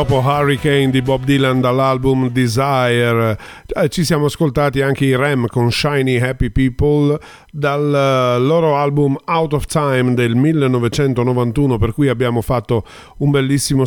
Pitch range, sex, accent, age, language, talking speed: 120-150 Hz, male, native, 40-59, Italian, 130 wpm